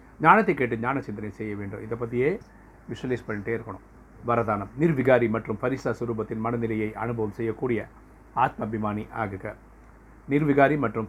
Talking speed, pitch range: 130 wpm, 110-125 Hz